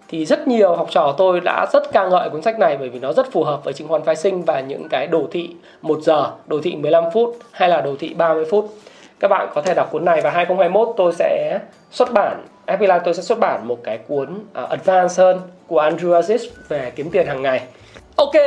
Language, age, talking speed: Vietnamese, 20-39, 245 wpm